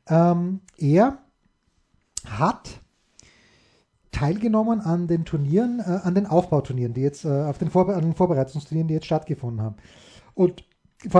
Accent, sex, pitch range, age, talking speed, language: German, male, 160-200 Hz, 30-49, 140 wpm, German